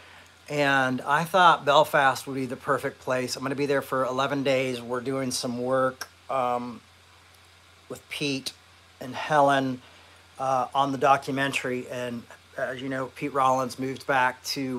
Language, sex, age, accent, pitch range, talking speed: English, male, 40-59, American, 105-135 Hz, 155 wpm